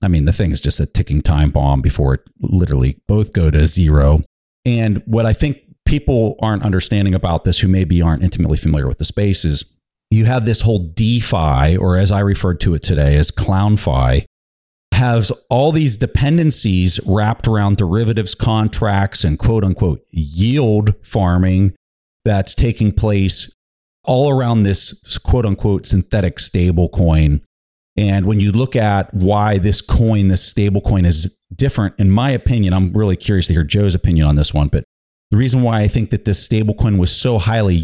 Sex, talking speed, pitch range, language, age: male, 175 wpm, 85-110 Hz, English, 40-59